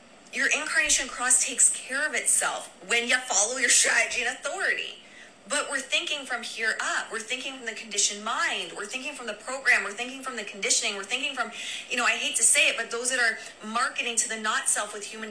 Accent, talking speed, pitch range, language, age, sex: American, 225 wpm, 210-250 Hz, English, 20-39, female